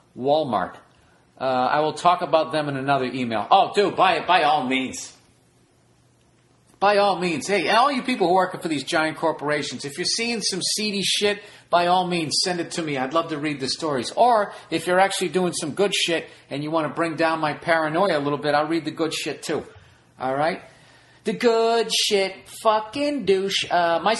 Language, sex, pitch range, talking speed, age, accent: English, male, 140-180 Hz, 210 wpm, 40-59, American